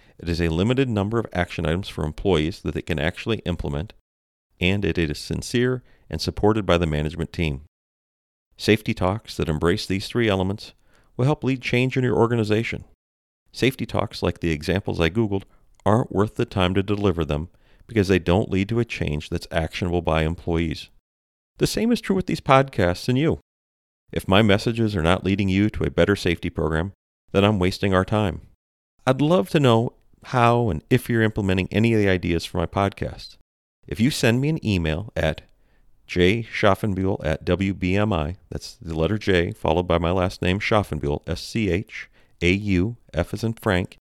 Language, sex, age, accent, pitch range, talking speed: English, male, 40-59, American, 85-110 Hz, 175 wpm